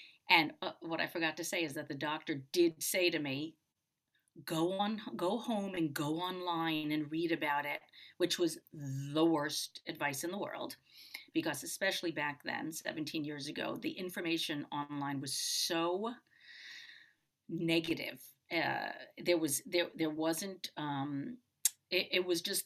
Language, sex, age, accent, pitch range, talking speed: English, female, 40-59, American, 150-185 Hz, 150 wpm